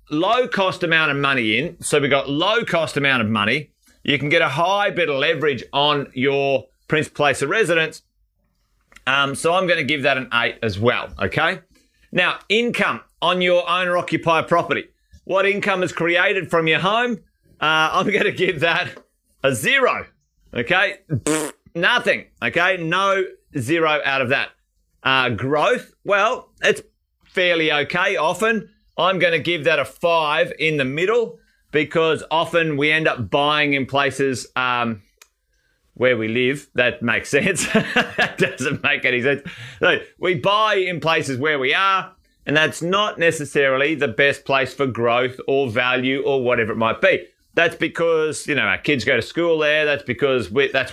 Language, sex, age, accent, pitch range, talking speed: English, male, 30-49, Australian, 135-175 Hz, 170 wpm